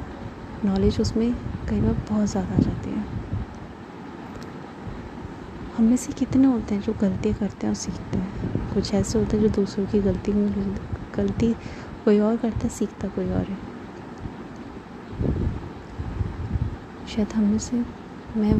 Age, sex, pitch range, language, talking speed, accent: 20-39, female, 185-245 Hz, Hindi, 140 wpm, native